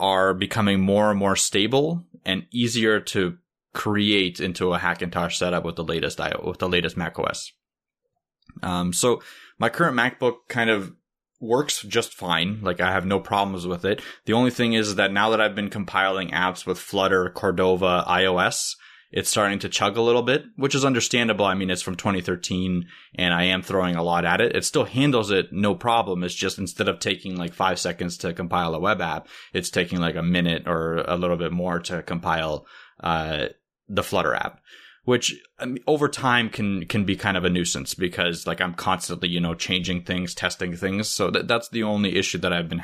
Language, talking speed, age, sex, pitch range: English, 200 wpm, 20-39, male, 90-115 Hz